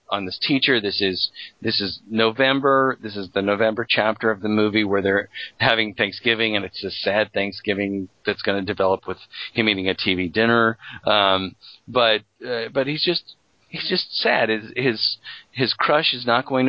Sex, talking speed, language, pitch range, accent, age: male, 185 wpm, English, 100-130 Hz, American, 40-59